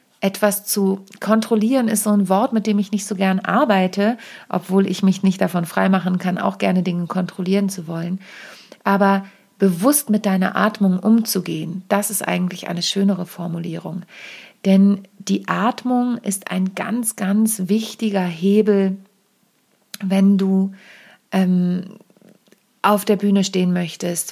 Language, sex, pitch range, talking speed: German, female, 185-210 Hz, 140 wpm